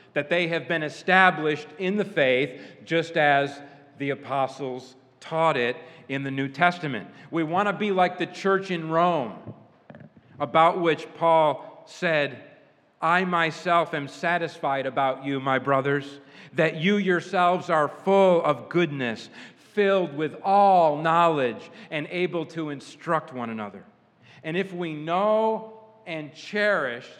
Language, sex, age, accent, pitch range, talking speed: English, male, 40-59, American, 145-185 Hz, 135 wpm